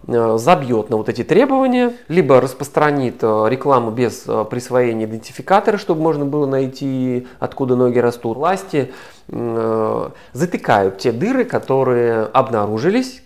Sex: male